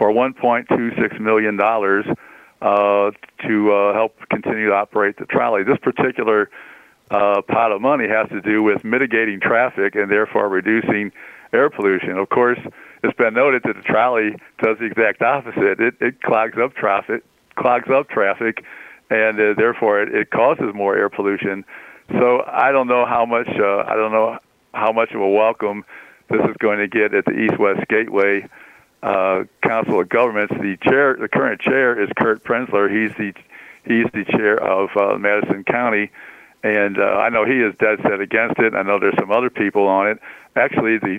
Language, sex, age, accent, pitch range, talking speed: English, male, 50-69, American, 100-115 Hz, 180 wpm